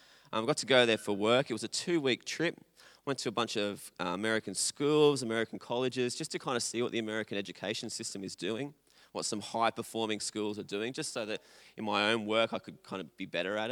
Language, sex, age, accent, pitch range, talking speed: English, male, 20-39, Australian, 105-125 Hz, 235 wpm